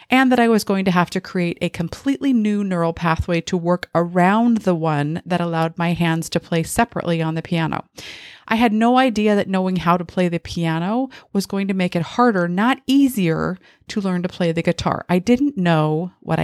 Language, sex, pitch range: English, female, 175-225 Hz